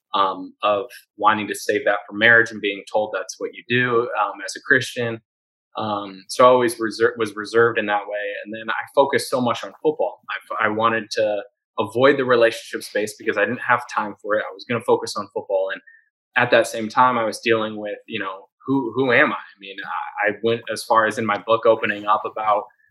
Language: English